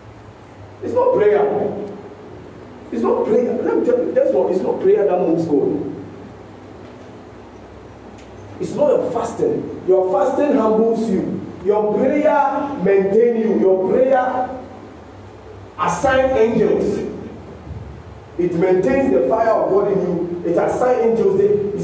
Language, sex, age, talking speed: English, male, 40-59, 125 wpm